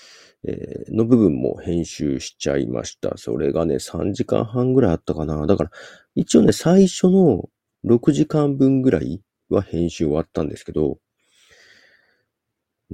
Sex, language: male, Japanese